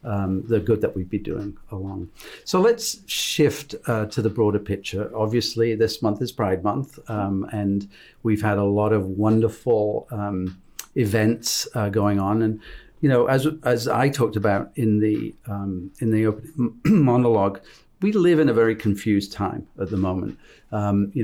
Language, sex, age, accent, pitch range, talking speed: English, male, 50-69, British, 100-115 Hz, 170 wpm